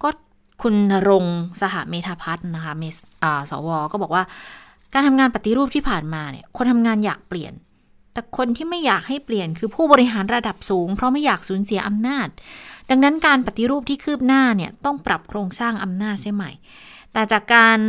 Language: Thai